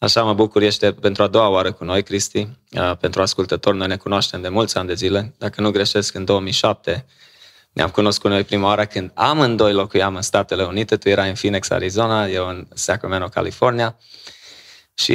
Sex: male